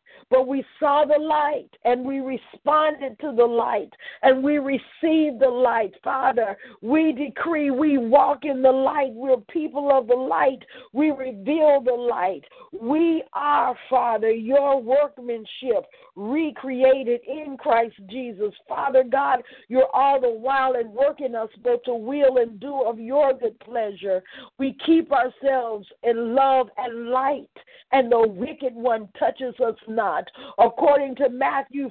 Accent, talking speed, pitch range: American, 145 wpm, 245-290 Hz